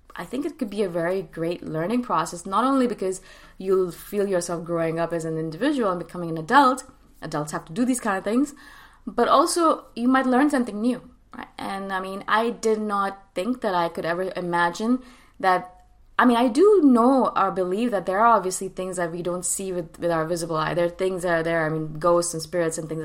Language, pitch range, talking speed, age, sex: English, 170-220 Hz, 230 wpm, 20-39, female